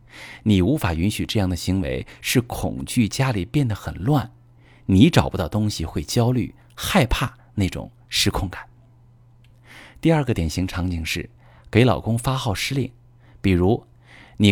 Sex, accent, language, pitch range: male, native, Chinese, 95-120 Hz